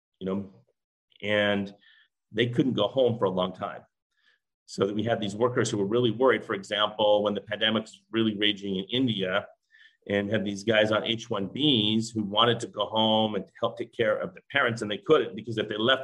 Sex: male